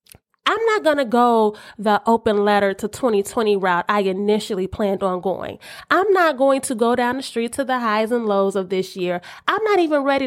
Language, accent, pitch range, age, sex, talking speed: English, American, 210-275 Hz, 30-49, female, 210 wpm